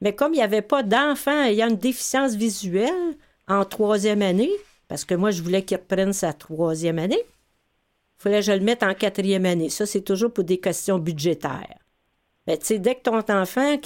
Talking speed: 205 wpm